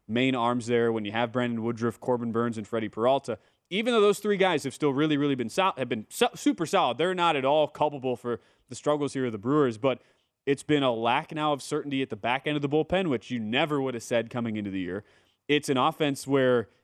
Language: English